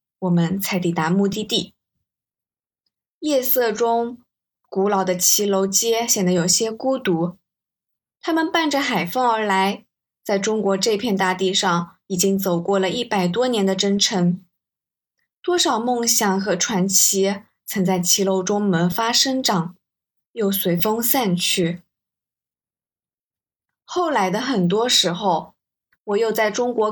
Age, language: 20-39, Chinese